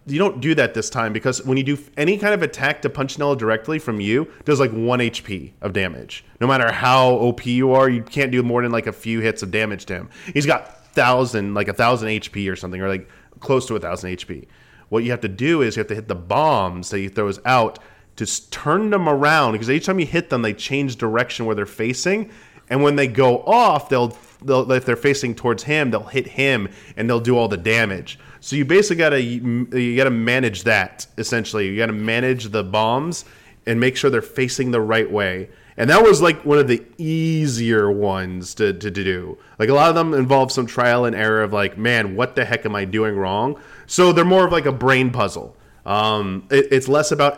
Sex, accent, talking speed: male, American, 230 wpm